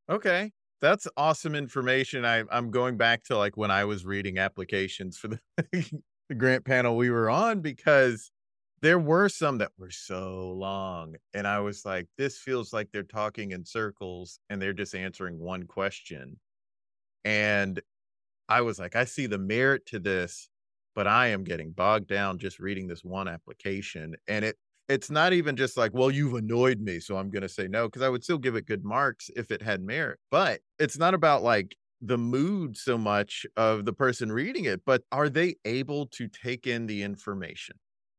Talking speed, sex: 190 wpm, male